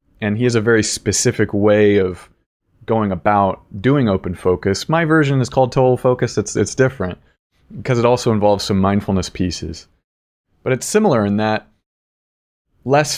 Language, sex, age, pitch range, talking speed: English, male, 30-49, 100-130 Hz, 160 wpm